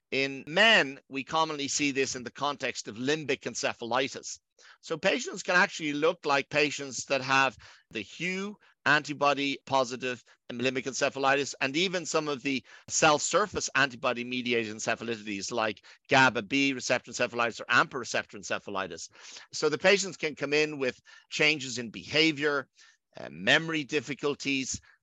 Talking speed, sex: 135 wpm, male